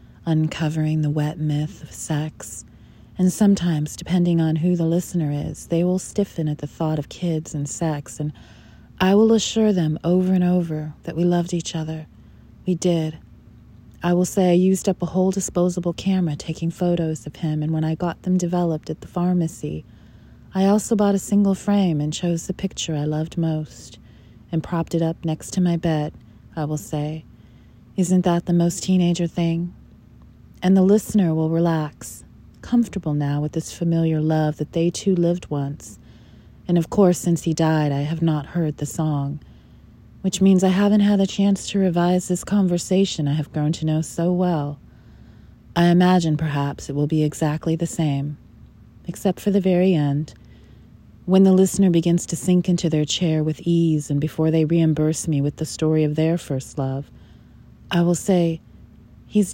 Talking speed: 180 wpm